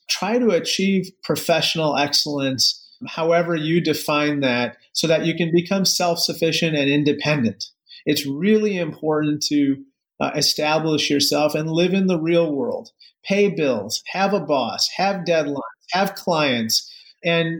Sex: male